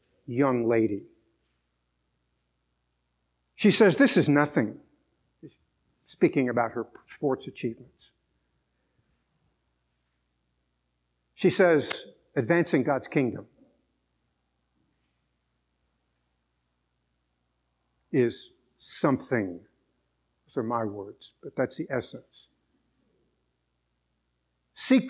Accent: American